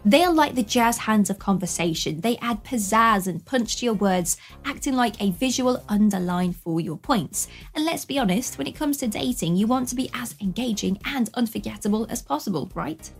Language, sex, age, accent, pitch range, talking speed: English, female, 20-39, British, 200-260 Hz, 195 wpm